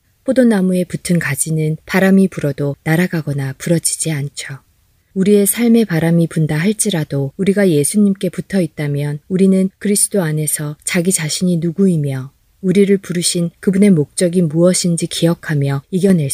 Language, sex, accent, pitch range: Korean, female, native, 145-190 Hz